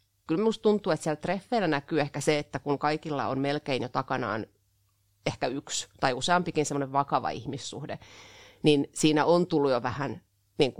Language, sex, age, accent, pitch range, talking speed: Finnish, female, 30-49, native, 125-150 Hz, 160 wpm